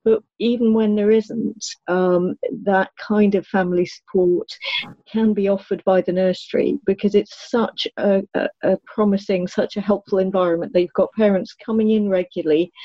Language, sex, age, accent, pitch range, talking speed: English, female, 40-59, British, 175-205 Hz, 155 wpm